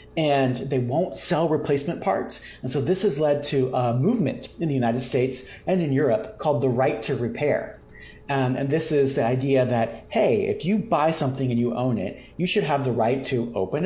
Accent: American